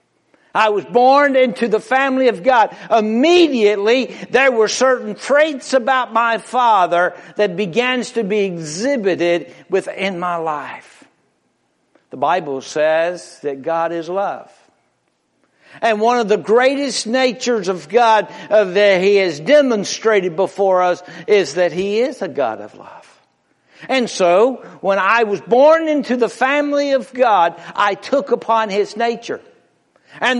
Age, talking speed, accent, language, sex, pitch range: 60-79, 140 wpm, American, English, male, 195-260 Hz